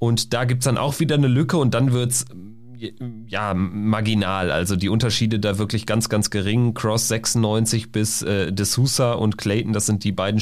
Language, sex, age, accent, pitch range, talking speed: German, male, 40-59, German, 110-150 Hz, 185 wpm